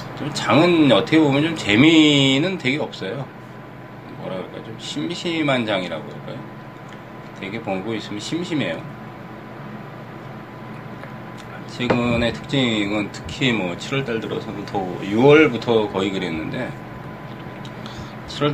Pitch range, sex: 105-135 Hz, male